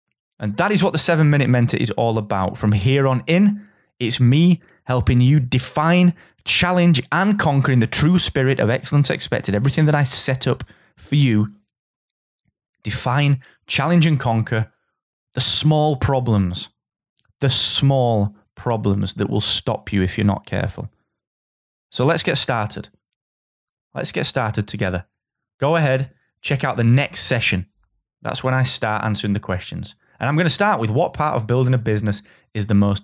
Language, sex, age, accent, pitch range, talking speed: English, male, 20-39, British, 105-145 Hz, 165 wpm